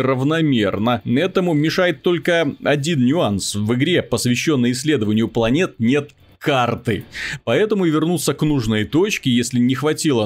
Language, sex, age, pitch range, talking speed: Russian, male, 30-49, 115-150 Hz, 125 wpm